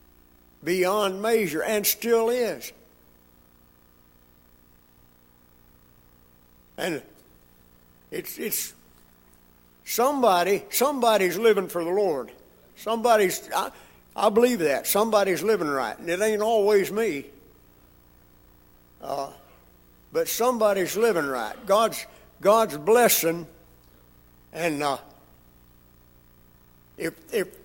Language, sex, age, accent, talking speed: English, male, 60-79, American, 85 wpm